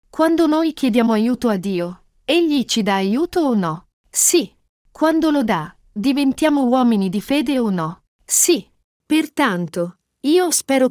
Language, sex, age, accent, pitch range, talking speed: Italian, female, 40-59, native, 195-265 Hz, 145 wpm